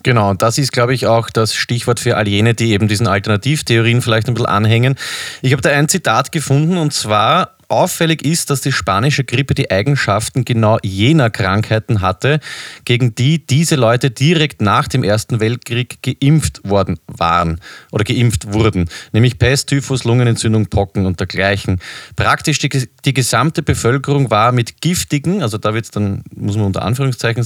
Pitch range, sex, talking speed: 110-135 Hz, male, 170 wpm